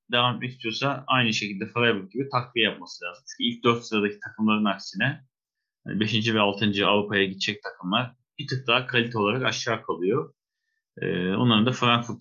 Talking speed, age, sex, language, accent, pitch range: 155 wpm, 30-49, male, Turkish, native, 105-130 Hz